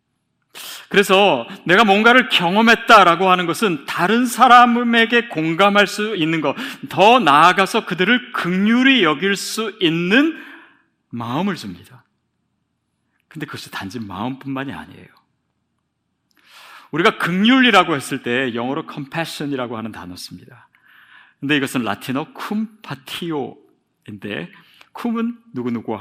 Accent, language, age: native, Korean, 40-59